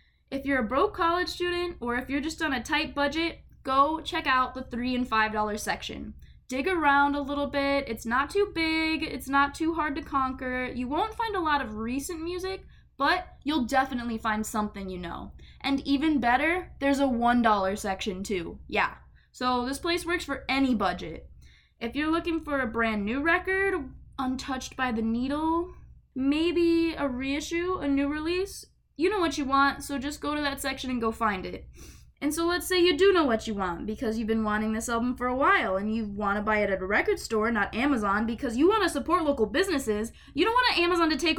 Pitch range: 230-320 Hz